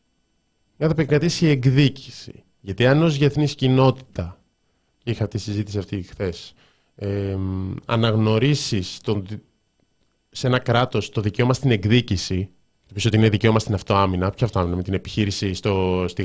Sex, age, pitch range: male, 20-39, 110-150 Hz